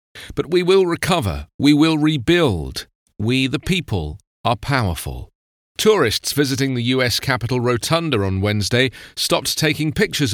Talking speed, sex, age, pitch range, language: 135 wpm, male, 40-59, 110-150 Hz, English